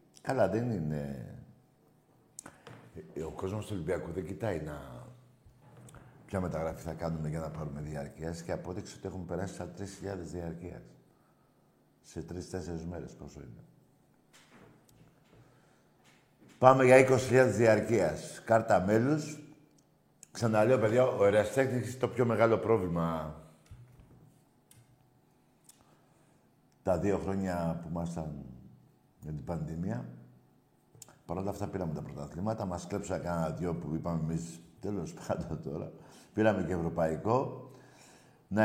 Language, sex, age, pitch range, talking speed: Greek, male, 50-69, 85-130 Hz, 110 wpm